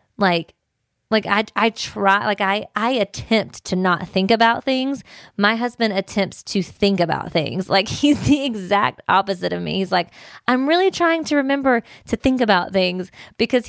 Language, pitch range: English, 180-230 Hz